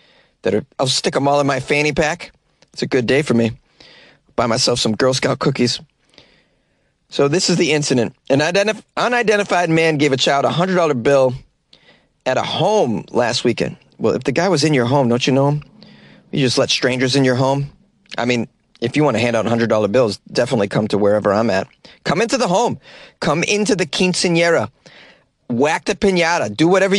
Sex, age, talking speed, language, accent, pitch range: male, 30-49, 200 wpm, English, American, 120-165 Hz